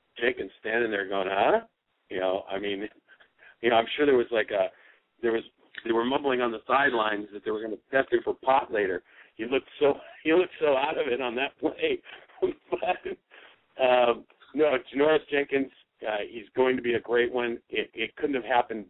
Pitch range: 105-135 Hz